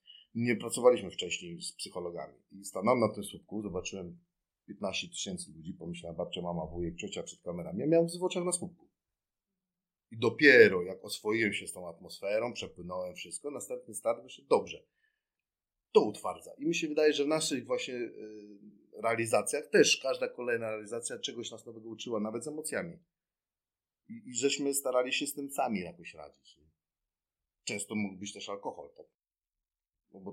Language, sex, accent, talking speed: Polish, male, native, 155 wpm